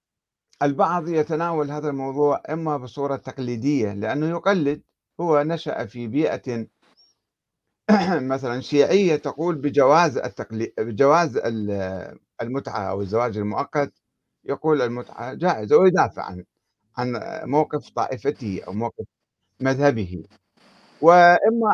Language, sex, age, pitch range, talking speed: Arabic, male, 50-69, 115-160 Hz, 95 wpm